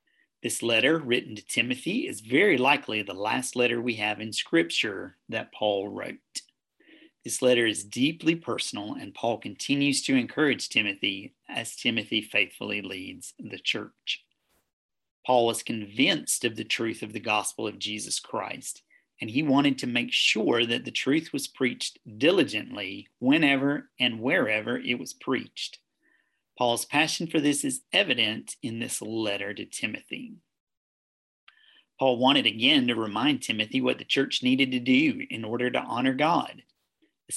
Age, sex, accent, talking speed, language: 40-59, male, American, 150 wpm, English